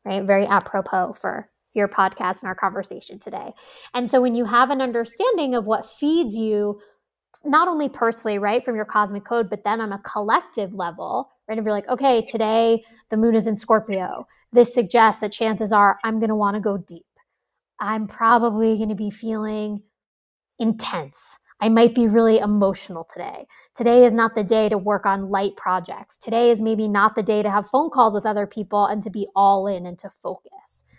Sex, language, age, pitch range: female, English, 20-39, 200-230 Hz